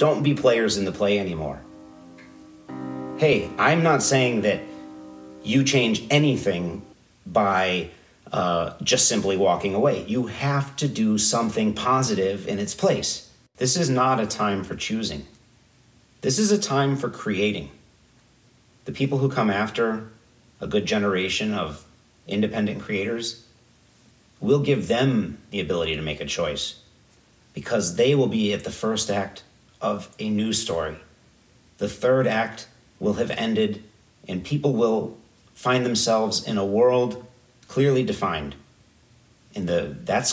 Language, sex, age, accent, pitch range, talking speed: English, male, 40-59, American, 100-130 Hz, 140 wpm